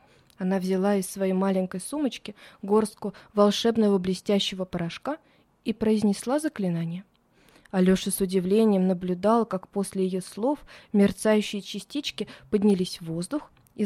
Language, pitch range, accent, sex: Russian, 195-240 Hz, native, female